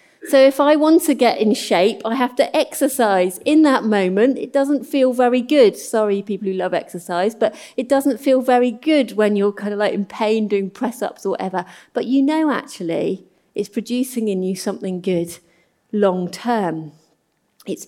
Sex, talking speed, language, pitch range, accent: female, 180 wpm, English, 180-245 Hz, British